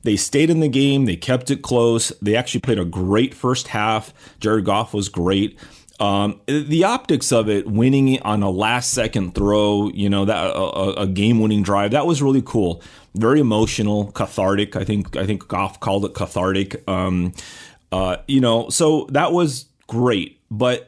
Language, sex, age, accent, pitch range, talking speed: English, male, 30-49, American, 100-135 Hz, 170 wpm